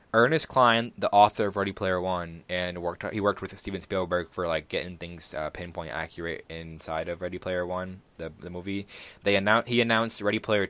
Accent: American